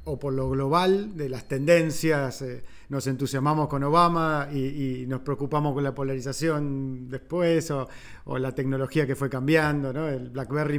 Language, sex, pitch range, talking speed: Spanish, male, 135-160 Hz, 165 wpm